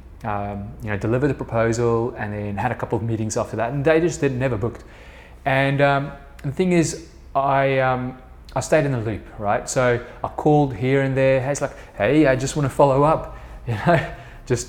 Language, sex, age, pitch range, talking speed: English, male, 20-39, 110-140 Hz, 215 wpm